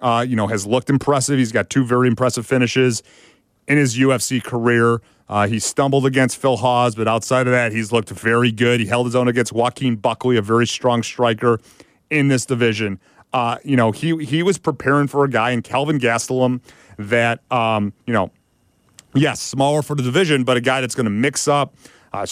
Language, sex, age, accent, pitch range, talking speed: English, male, 40-59, American, 120-140 Hz, 200 wpm